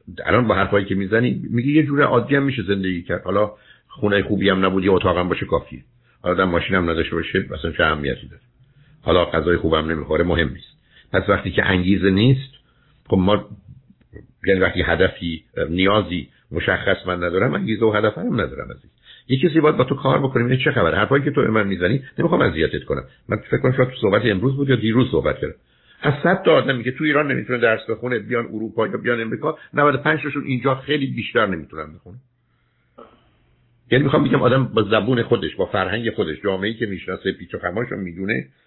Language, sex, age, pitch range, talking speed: Persian, male, 60-79, 95-130 Hz, 190 wpm